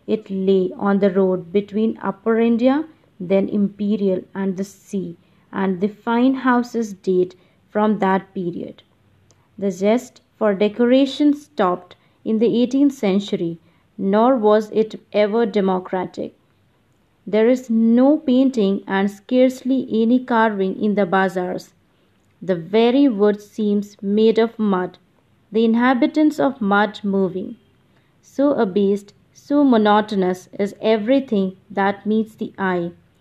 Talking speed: 125 wpm